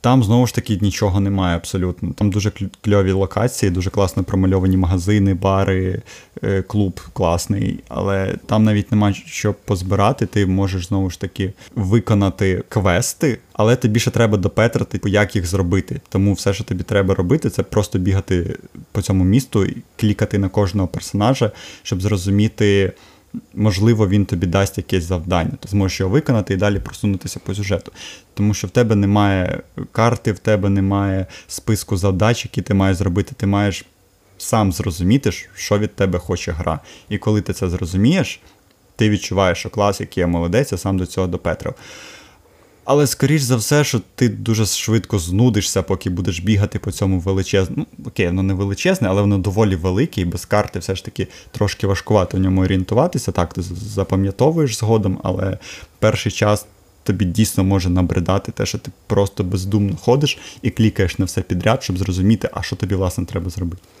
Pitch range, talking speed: 95-110 Hz, 165 wpm